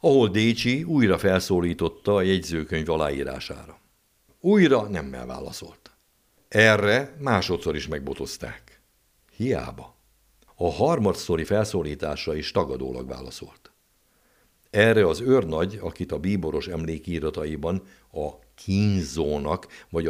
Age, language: 60-79, Hungarian